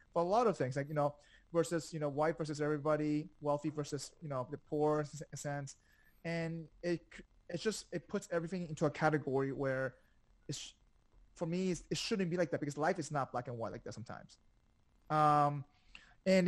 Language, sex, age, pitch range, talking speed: English, male, 20-39, 135-165 Hz, 200 wpm